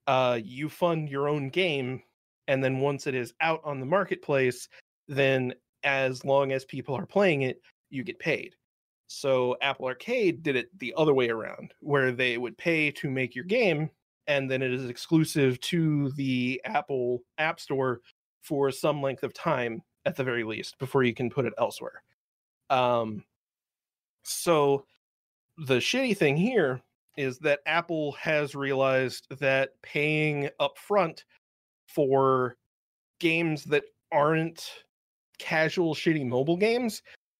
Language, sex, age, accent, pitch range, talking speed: English, male, 30-49, American, 130-155 Hz, 145 wpm